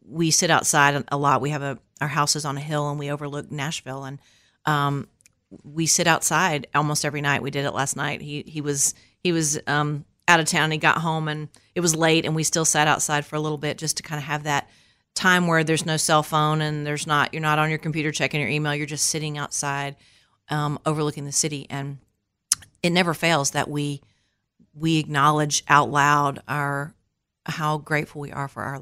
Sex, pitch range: female, 140-155 Hz